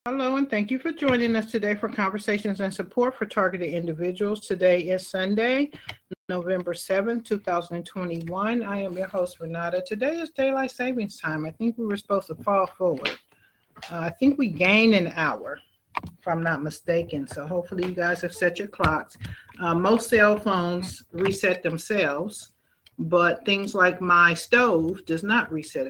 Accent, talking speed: American, 165 wpm